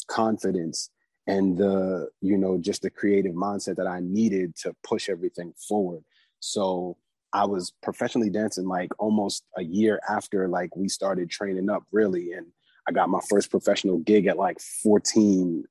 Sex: male